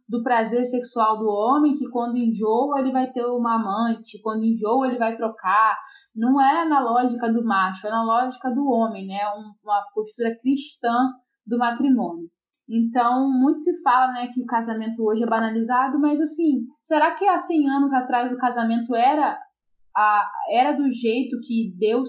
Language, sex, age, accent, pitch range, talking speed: Portuguese, female, 20-39, Brazilian, 225-275 Hz, 170 wpm